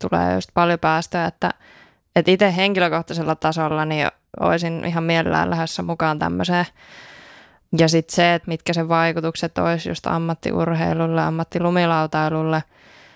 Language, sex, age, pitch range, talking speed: Finnish, female, 20-39, 160-175 Hz, 125 wpm